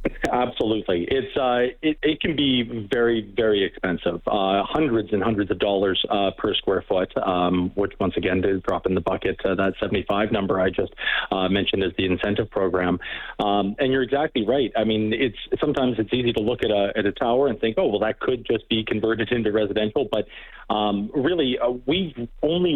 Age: 40-59